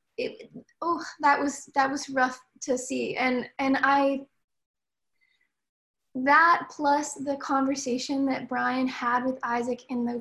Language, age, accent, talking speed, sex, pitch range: English, 10-29, American, 135 wpm, female, 260-295 Hz